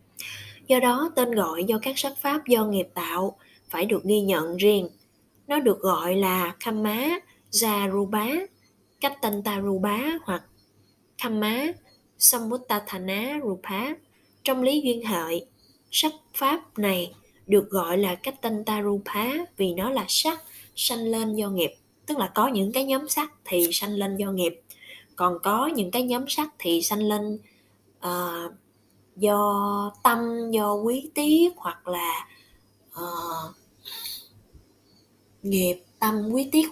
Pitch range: 175-245 Hz